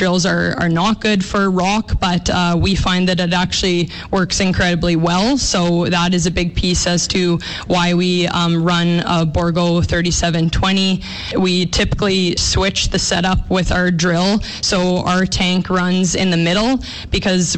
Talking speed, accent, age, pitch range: 165 wpm, American, 20-39, 175-190 Hz